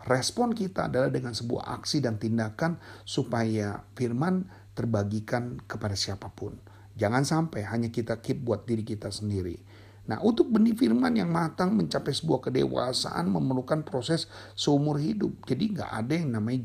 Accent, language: native, Indonesian